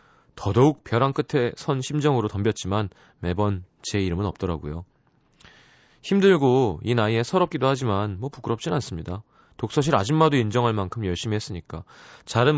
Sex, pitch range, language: male, 105-145 Hz, Korean